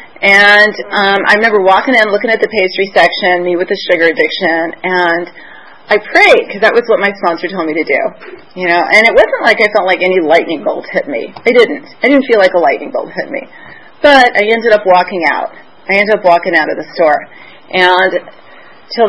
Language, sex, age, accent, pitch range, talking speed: English, female, 30-49, American, 180-225 Hz, 220 wpm